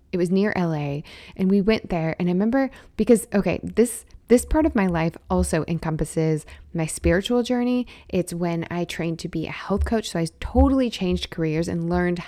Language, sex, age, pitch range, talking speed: English, female, 20-39, 165-210 Hz, 195 wpm